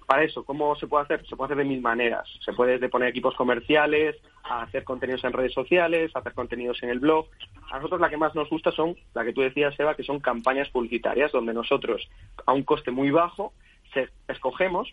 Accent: Spanish